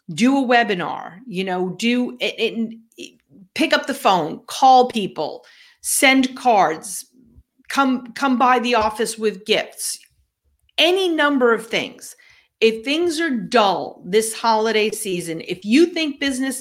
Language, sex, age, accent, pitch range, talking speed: English, female, 40-59, American, 195-255 Hz, 135 wpm